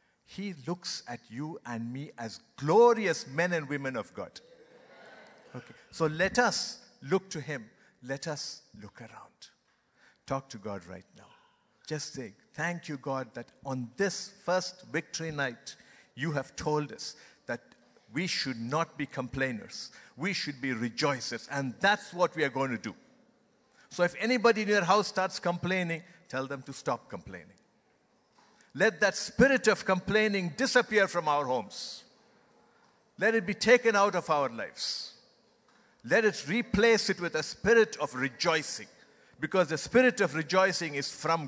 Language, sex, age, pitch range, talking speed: English, male, 60-79, 140-200 Hz, 155 wpm